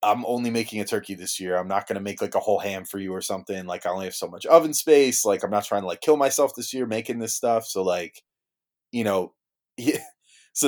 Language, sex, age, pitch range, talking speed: English, male, 20-39, 100-140 Hz, 265 wpm